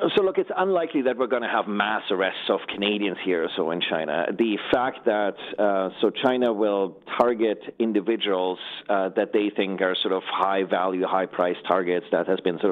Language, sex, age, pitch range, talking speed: English, male, 40-59, 95-115 Hz, 200 wpm